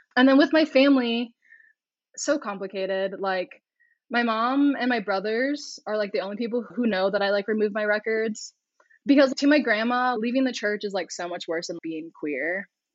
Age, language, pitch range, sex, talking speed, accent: 10-29, English, 190-245 Hz, female, 190 wpm, American